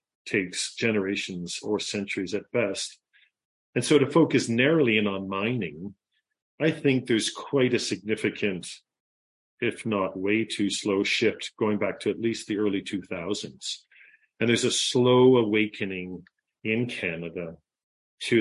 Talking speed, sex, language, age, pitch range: 135 wpm, male, English, 40-59, 95-110 Hz